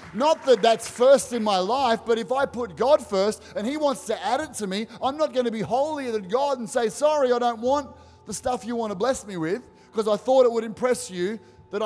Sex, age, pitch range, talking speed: male, 30-49, 180-225 Hz, 260 wpm